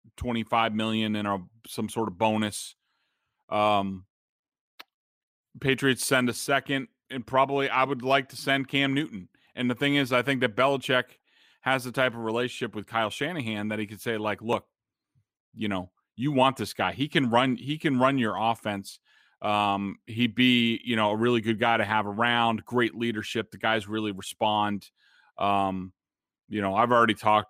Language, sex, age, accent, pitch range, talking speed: English, male, 30-49, American, 110-145 Hz, 180 wpm